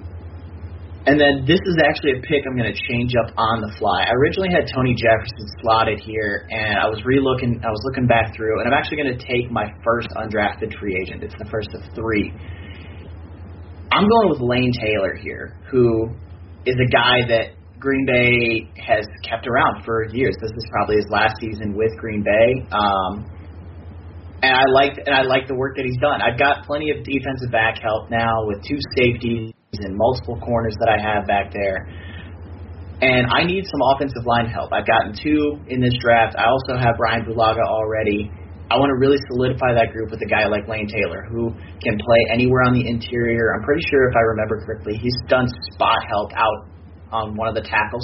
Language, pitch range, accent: English, 100-125 Hz, American